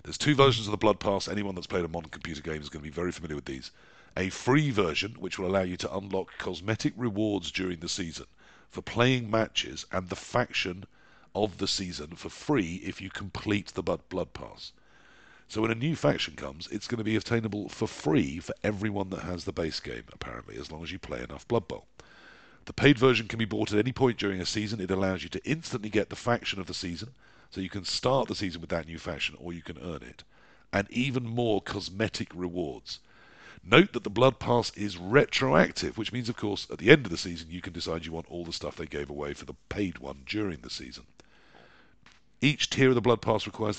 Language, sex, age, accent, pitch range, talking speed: English, male, 50-69, British, 85-110 Hz, 230 wpm